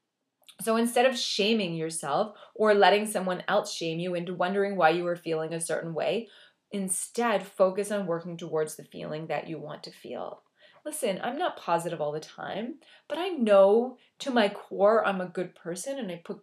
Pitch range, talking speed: 175-225 Hz, 190 wpm